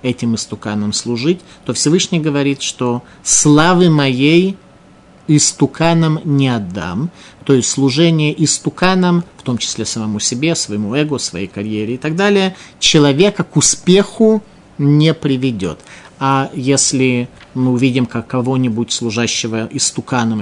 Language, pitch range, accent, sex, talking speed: Russian, 115-150 Hz, native, male, 120 wpm